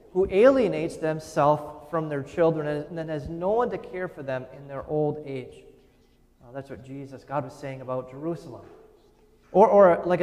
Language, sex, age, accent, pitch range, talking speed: English, male, 30-49, American, 135-185 Hz, 180 wpm